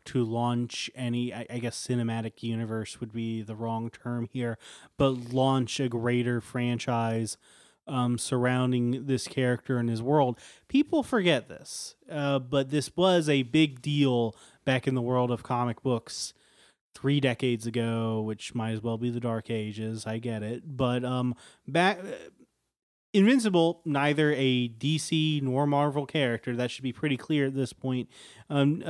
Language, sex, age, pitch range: English, male, 30-49, 115-145 Hz